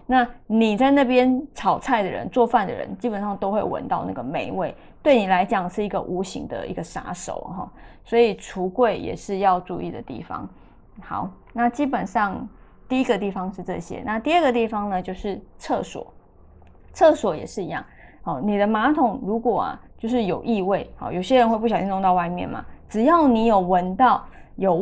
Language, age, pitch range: Chinese, 20-39, 195-245 Hz